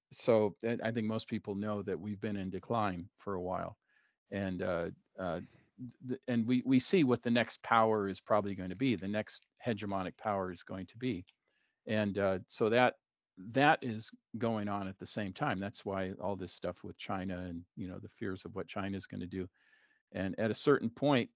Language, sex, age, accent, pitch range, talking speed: English, male, 50-69, American, 95-115 Hz, 210 wpm